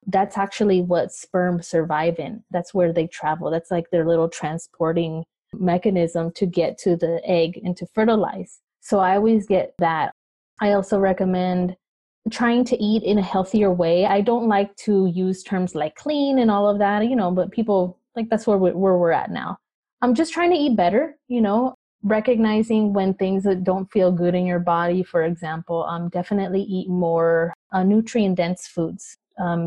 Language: English